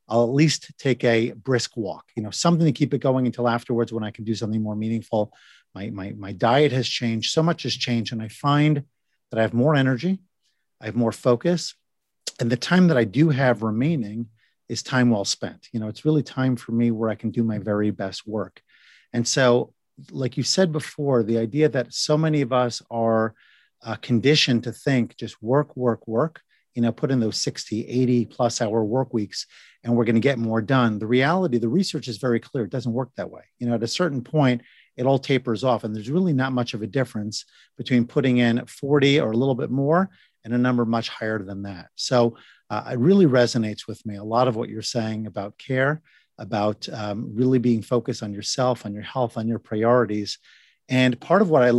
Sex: male